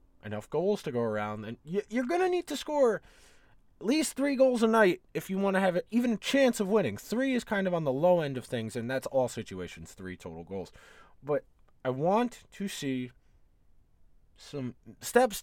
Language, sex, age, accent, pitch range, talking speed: English, male, 20-39, American, 120-200 Hz, 200 wpm